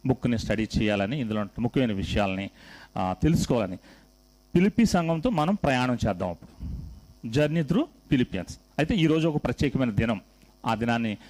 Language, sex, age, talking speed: Telugu, male, 40-59, 120 wpm